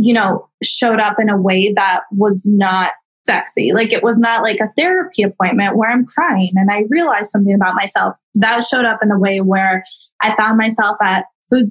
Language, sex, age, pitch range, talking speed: English, female, 10-29, 200-230 Hz, 205 wpm